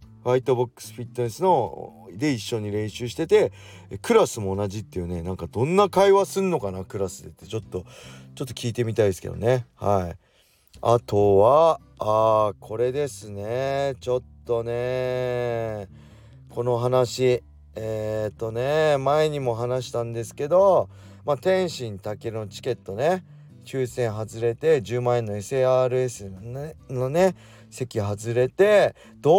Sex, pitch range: male, 100-130 Hz